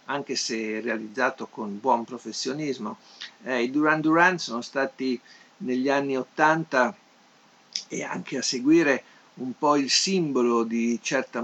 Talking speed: 130 wpm